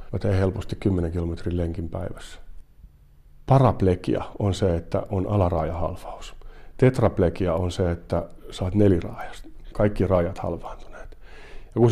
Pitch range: 85-110 Hz